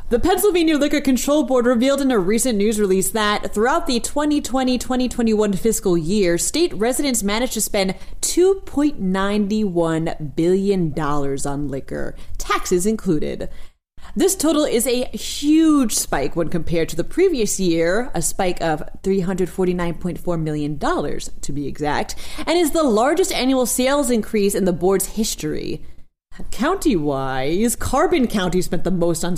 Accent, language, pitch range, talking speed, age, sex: American, English, 175-275 Hz, 135 wpm, 30-49, female